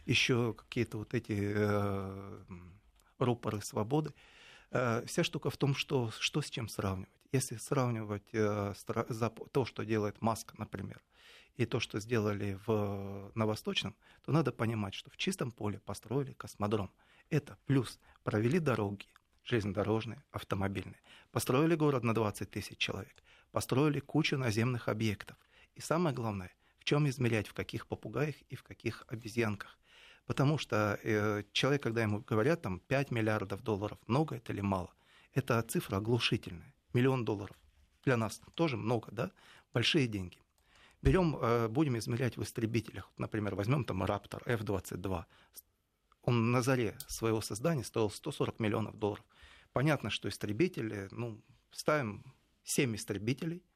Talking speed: 140 wpm